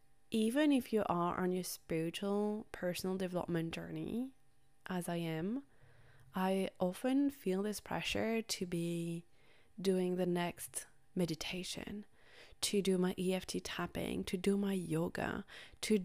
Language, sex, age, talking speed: English, female, 20-39, 125 wpm